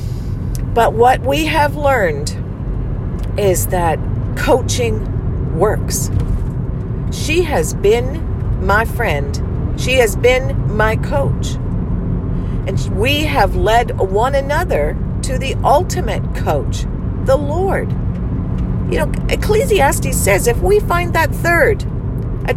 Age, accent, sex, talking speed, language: 50-69, American, female, 110 wpm, English